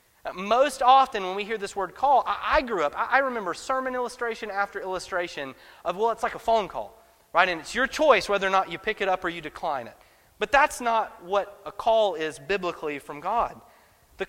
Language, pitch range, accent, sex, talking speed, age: English, 195-250 Hz, American, male, 215 wpm, 30-49